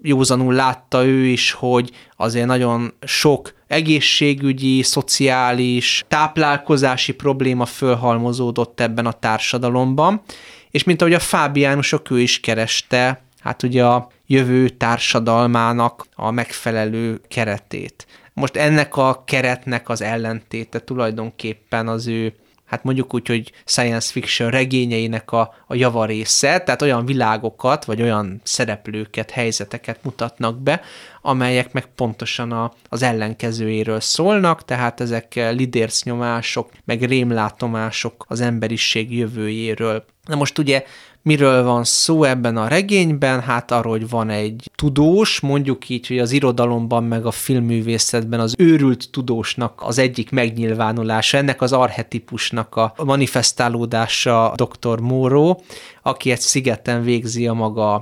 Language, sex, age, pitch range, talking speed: Hungarian, male, 20-39, 115-130 Hz, 120 wpm